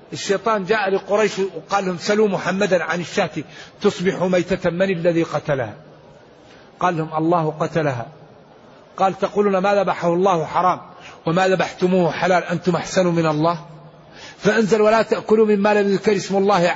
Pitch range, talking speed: 180-215 Hz, 135 wpm